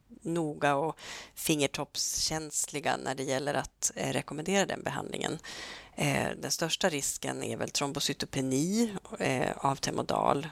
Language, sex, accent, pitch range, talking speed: Swedish, female, native, 140-180 Hz, 120 wpm